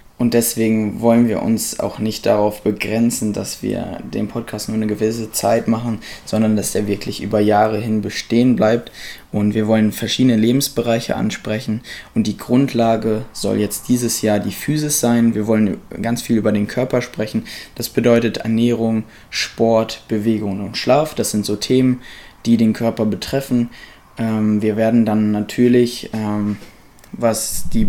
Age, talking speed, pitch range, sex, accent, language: 20-39, 155 wpm, 105-120 Hz, male, German, German